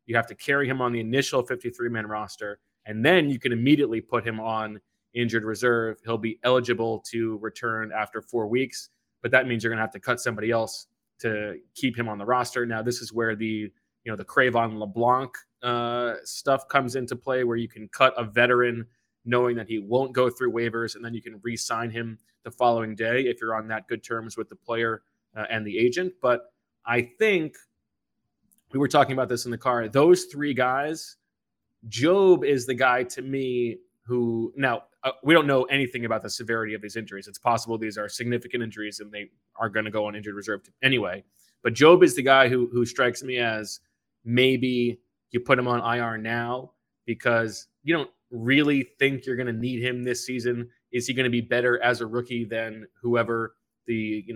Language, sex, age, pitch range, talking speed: English, male, 20-39, 115-125 Hz, 205 wpm